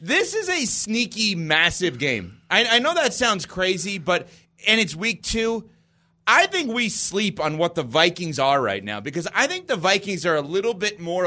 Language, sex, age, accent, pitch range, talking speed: English, male, 30-49, American, 155-210 Hz, 200 wpm